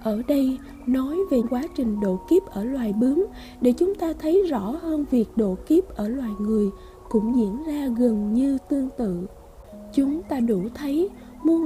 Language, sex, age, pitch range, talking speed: Vietnamese, female, 20-39, 220-295 Hz, 180 wpm